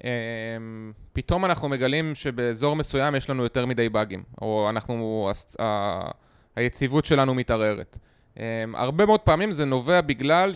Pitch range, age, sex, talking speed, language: 125-165 Hz, 20-39, male, 140 wpm, Hebrew